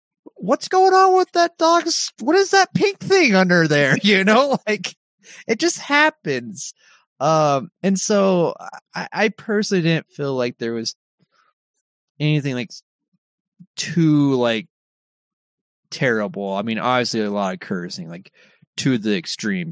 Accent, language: American, English